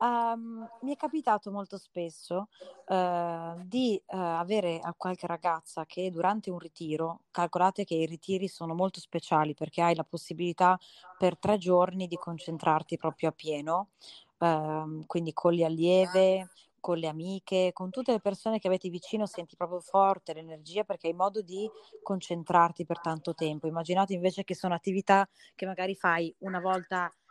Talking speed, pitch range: 160 wpm, 165-195 Hz